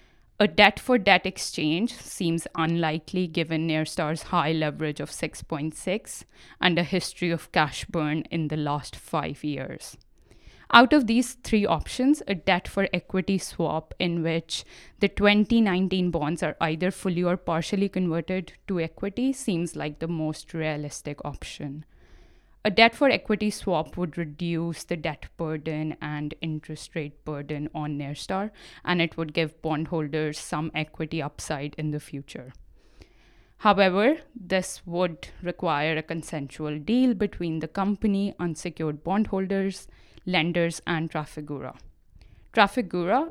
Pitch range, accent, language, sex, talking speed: 155-190 Hz, Indian, English, female, 125 wpm